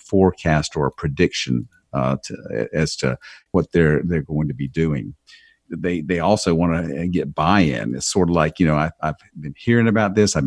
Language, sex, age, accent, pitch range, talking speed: English, male, 50-69, American, 75-100 Hz, 200 wpm